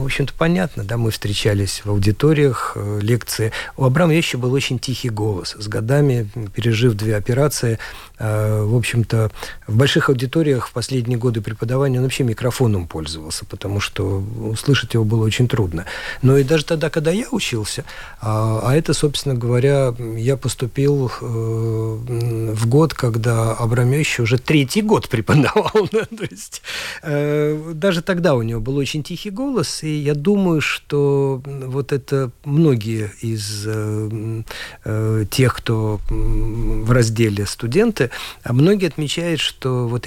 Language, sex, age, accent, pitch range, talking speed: Russian, male, 50-69, native, 110-145 Hz, 145 wpm